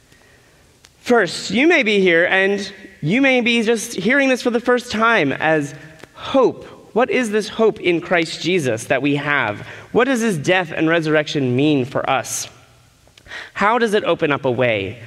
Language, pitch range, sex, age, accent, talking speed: English, 120-195 Hz, male, 30-49, American, 175 wpm